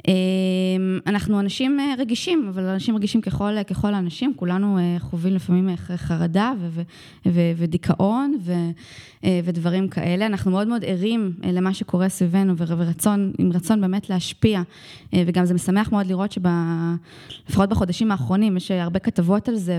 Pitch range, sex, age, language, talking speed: 175-205 Hz, female, 20-39, Hebrew, 140 wpm